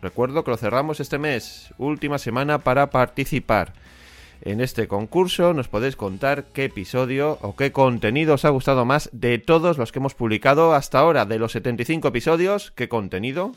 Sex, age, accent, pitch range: male, 30-49, Spanish, 105-140 Hz